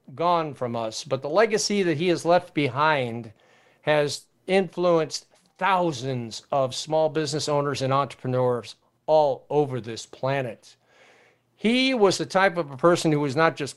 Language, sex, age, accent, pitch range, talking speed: English, male, 50-69, American, 145-190 Hz, 155 wpm